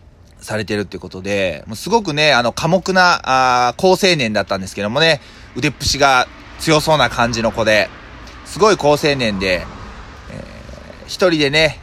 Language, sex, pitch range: Japanese, male, 120-180 Hz